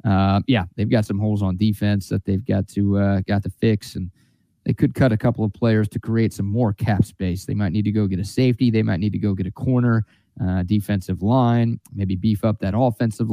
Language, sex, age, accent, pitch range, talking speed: English, male, 30-49, American, 100-120 Hz, 245 wpm